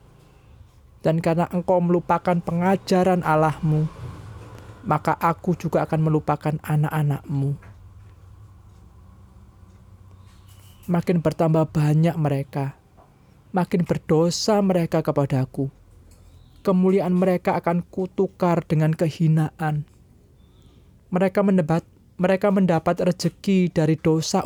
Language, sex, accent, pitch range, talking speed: Indonesian, male, native, 135-170 Hz, 80 wpm